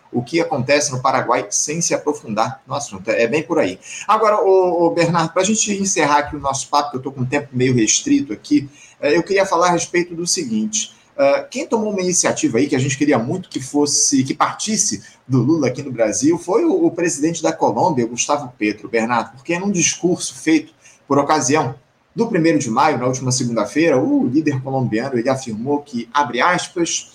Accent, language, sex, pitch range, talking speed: Brazilian, Portuguese, male, 140-190 Hz, 200 wpm